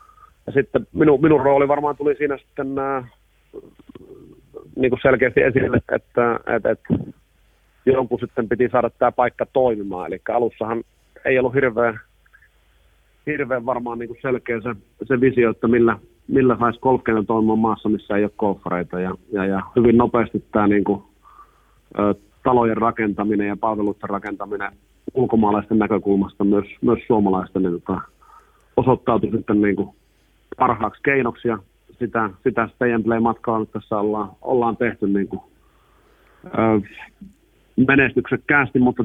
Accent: native